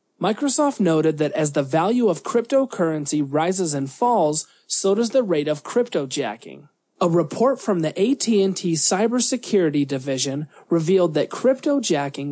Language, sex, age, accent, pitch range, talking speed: English, male, 30-49, American, 150-215 Hz, 140 wpm